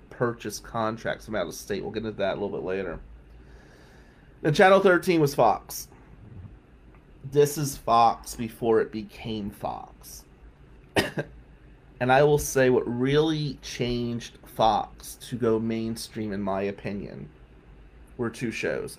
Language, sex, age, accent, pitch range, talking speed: English, male, 30-49, American, 100-140 Hz, 135 wpm